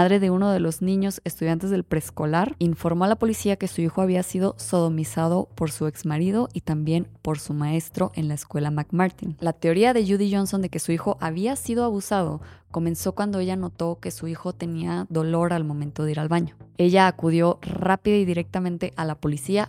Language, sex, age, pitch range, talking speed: Spanish, female, 20-39, 155-185 Hz, 200 wpm